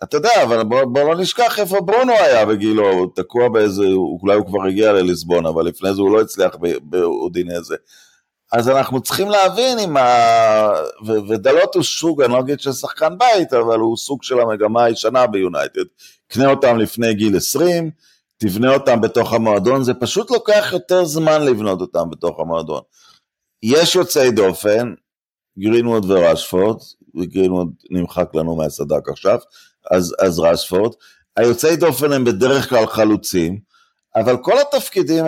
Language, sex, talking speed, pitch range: Hebrew, male, 155 wpm, 95-145 Hz